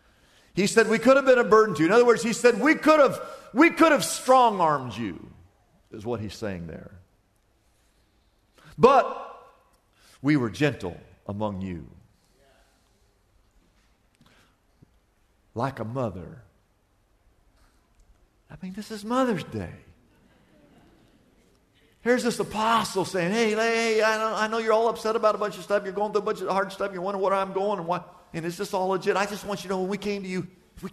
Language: English